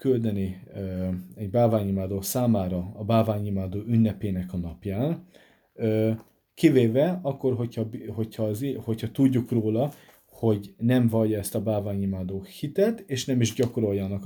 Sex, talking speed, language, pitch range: male, 125 wpm, Hungarian, 100-125 Hz